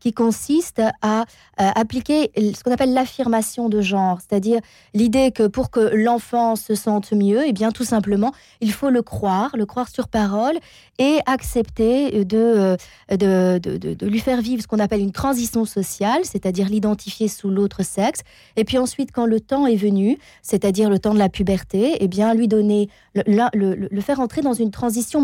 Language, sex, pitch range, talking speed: French, female, 195-245 Hz, 190 wpm